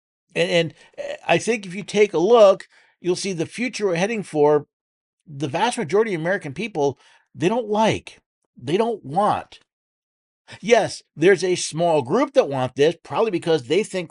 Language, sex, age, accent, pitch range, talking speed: English, male, 50-69, American, 130-205 Hz, 165 wpm